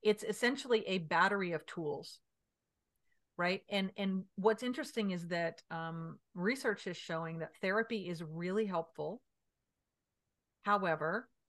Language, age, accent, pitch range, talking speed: English, 40-59, American, 170-210 Hz, 120 wpm